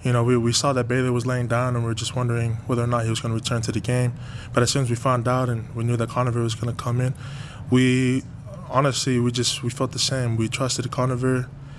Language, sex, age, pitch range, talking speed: English, male, 20-39, 115-130 Hz, 275 wpm